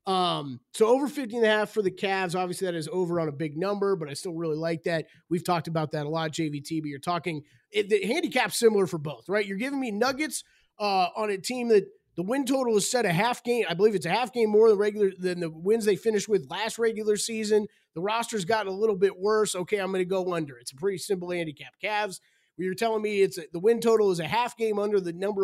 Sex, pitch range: male, 155-210 Hz